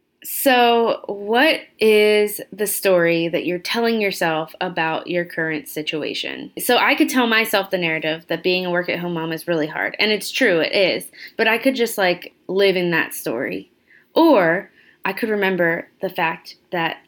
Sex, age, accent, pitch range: female, 20-39, American, 175-225 Hz